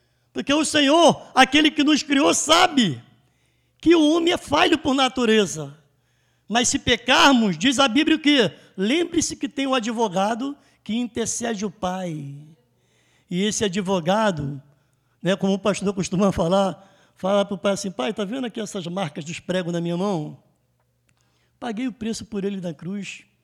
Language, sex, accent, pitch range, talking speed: Portuguese, male, Brazilian, 175-290 Hz, 160 wpm